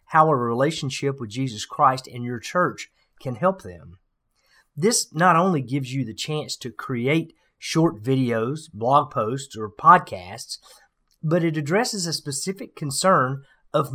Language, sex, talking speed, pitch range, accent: English, male, 145 wpm, 120-165 Hz, American